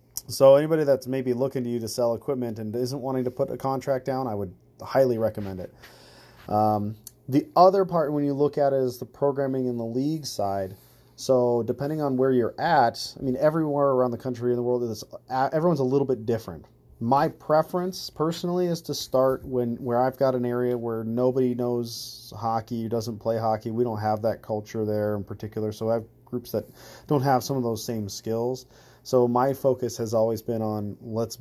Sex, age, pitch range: male, 30-49, 110-135 Hz